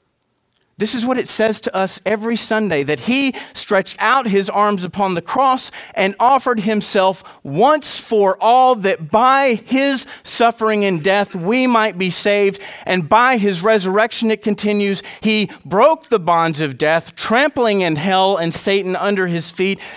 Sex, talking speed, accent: male, 160 wpm, American